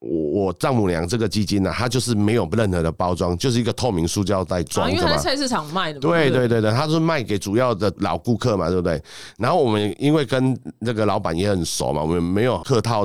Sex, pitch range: male, 90-125 Hz